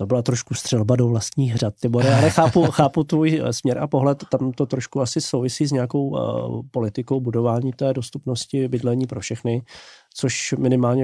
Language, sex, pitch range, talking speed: Slovak, male, 125-145 Hz, 170 wpm